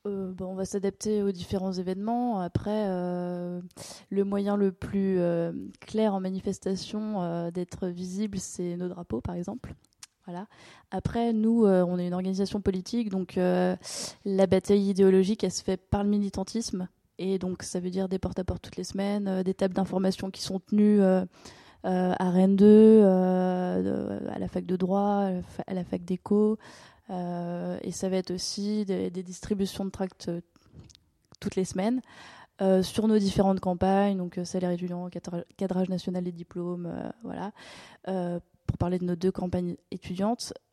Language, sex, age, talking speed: French, female, 20-39, 175 wpm